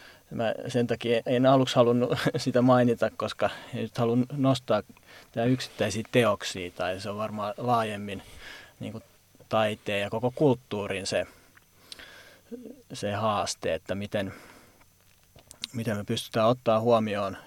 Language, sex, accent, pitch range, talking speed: Finnish, male, native, 100-120 Hz, 125 wpm